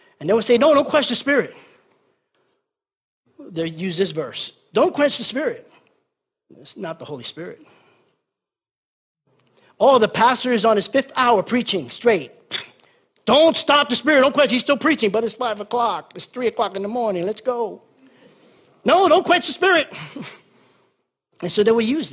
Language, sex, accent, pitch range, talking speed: English, male, American, 155-235 Hz, 170 wpm